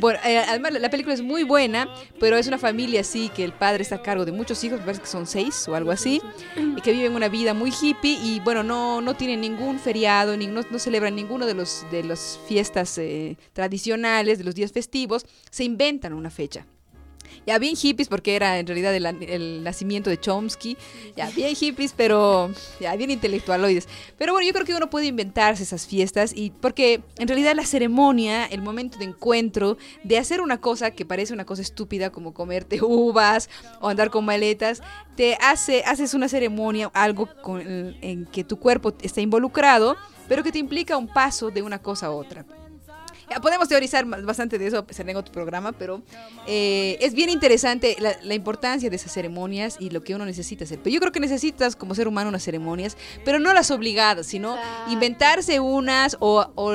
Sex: female